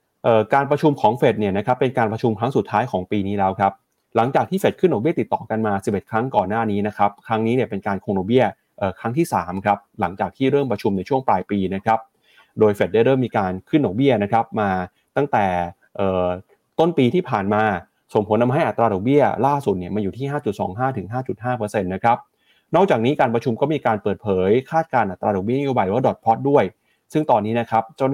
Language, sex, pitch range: Thai, male, 100-130 Hz